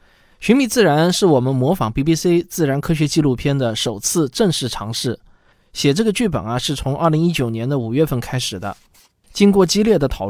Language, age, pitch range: Chinese, 20-39, 120-165 Hz